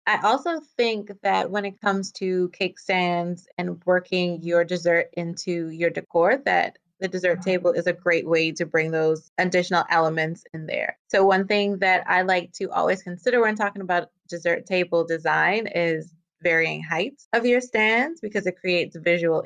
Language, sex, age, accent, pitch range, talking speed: English, female, 20-39, American, 170-200 Hz, 175 wpm